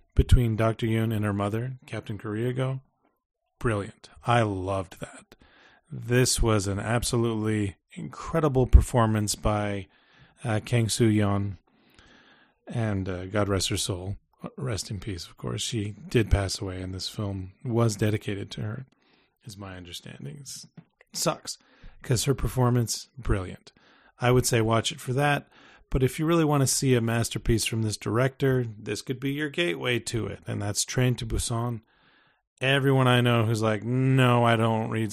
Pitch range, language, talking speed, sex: 105-130 Hz, English, 160 wpm, male